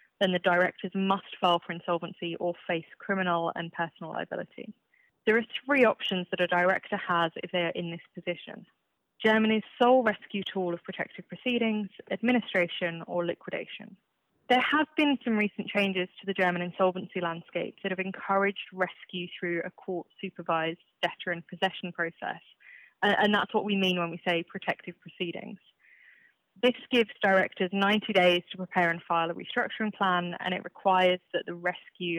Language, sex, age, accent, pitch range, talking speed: English, female, 20-39, British, 175-205 Hz, 160 wpm